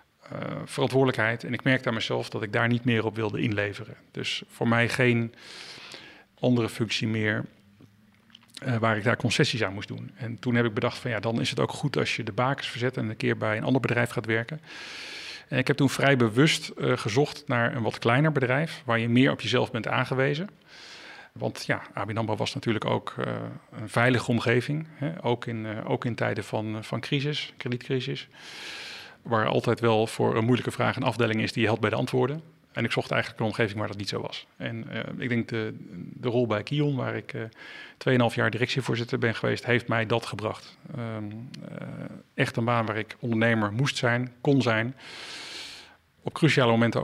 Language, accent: Dutch, Dutch